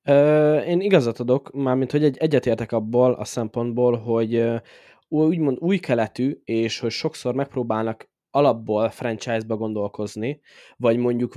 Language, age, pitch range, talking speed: Hungarian, 20-39, 115-140 Hz, 115 wpm